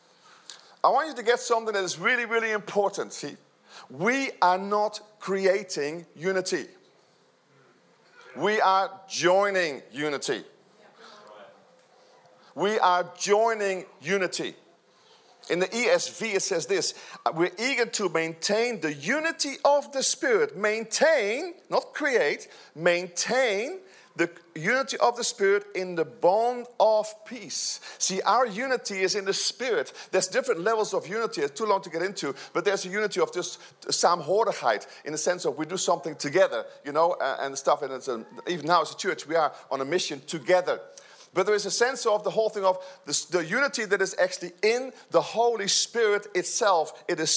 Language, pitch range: English, 180-240 Hz